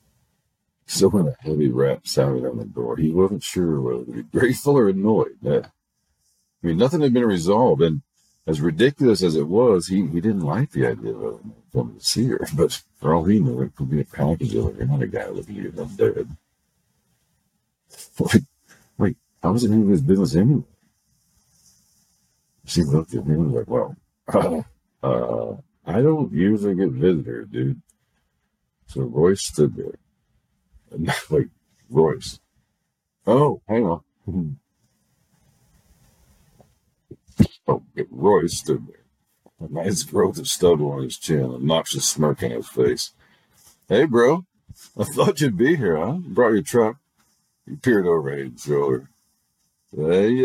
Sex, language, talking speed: male, English, 155 wpm